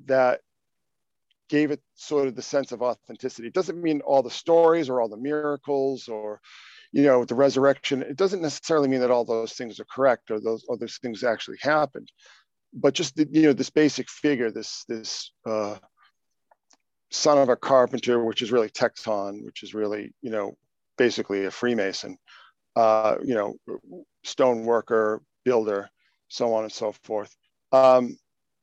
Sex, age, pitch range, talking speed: male, 50-69, 120-145 Hz, 165 wpm